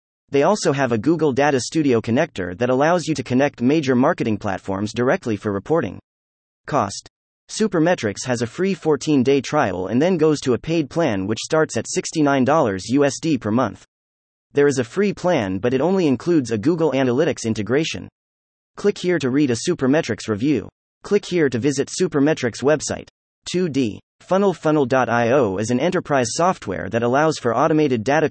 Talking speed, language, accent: 165 wpm, English, American